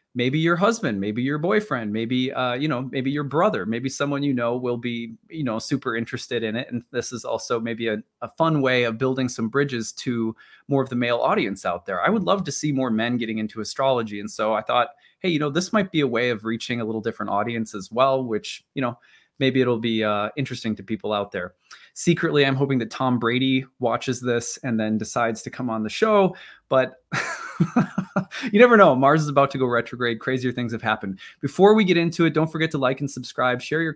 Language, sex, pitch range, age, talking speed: English, male, 115-145 Hz, 20-39, 230 wpm